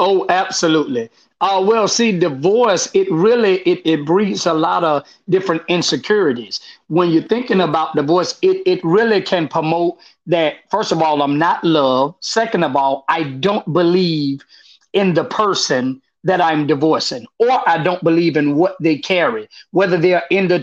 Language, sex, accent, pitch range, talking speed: English, male, American, 155-190 Hz, 170 wpm